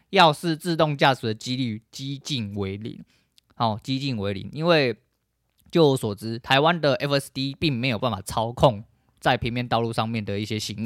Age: 20-39